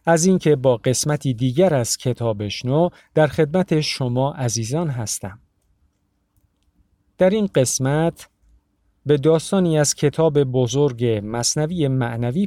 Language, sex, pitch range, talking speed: Persian, male, 110-160 Hz, 105 wpm